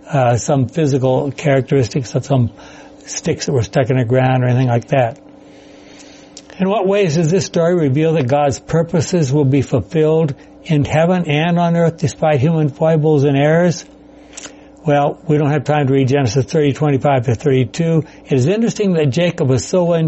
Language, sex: English, male